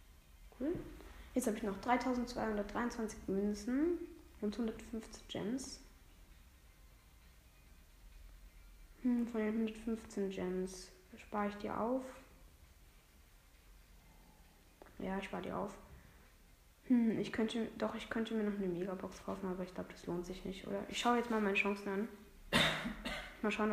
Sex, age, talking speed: female, 20-39, 135 wpm